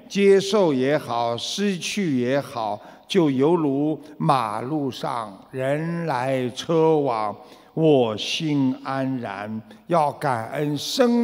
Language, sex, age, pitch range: Chinese, male, 60-79, 135-200 Hz